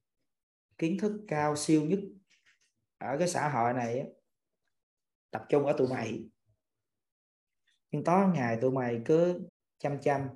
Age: 20-39